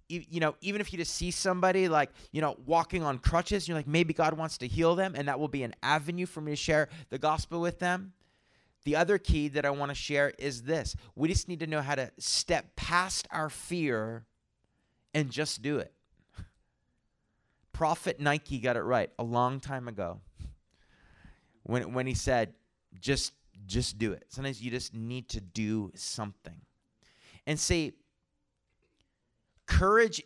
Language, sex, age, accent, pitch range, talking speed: English, male, 30-49, American, 120-155 Hz, 175 wpm